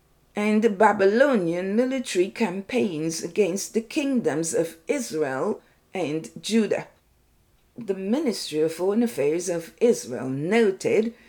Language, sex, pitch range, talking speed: English, female, 170-250 Hz, 105 wpm